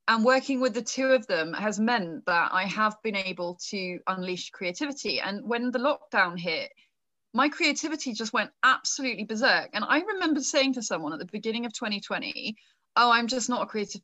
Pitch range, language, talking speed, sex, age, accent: 190-250 Hz, English, 190 wpm, female, 20-39, British